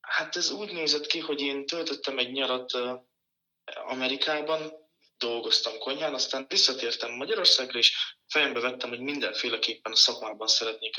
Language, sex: Hungarian, male